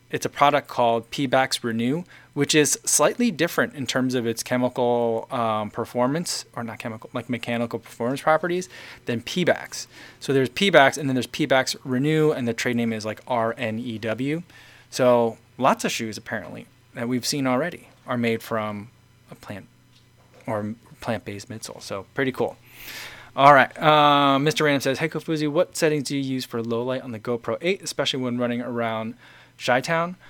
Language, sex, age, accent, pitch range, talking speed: English, male, 20-39, American, 120-140 Hz, 170 wpm